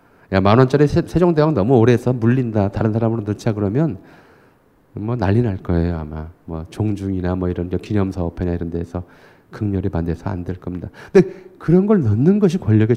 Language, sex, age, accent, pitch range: Korean, male, 40-59, native, 95-140 Hz